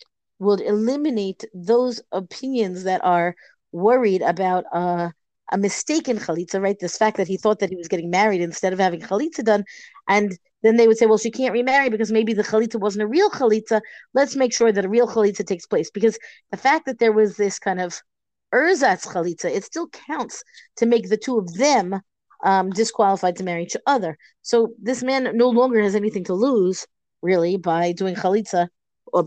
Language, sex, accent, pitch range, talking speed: English, female, American, 190-240 Hz, 195 wpm